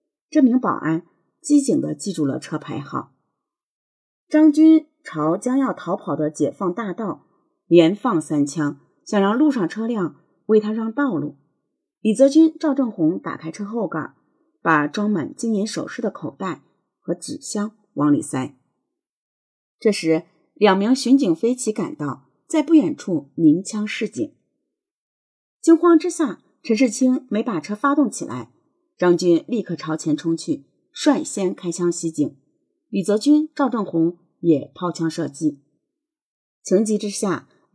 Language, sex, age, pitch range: Chinese, female, 30-49, 160-270 Hz